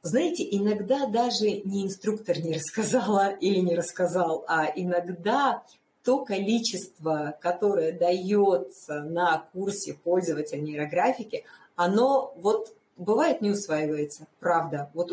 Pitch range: 165-215 Hz